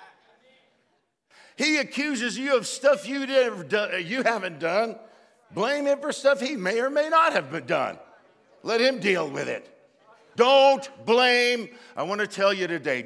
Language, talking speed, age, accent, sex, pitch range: English, 165 wpm, 60-79, American, male, 195-250 Hz